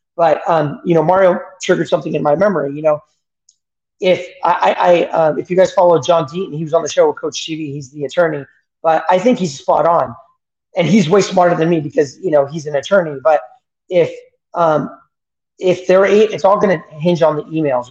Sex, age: male, 30-49